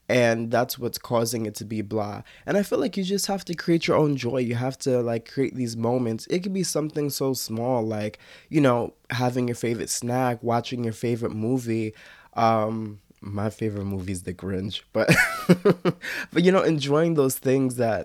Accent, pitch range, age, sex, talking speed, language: American, 115-145 Hz, 20-39, male, 195 wpm, English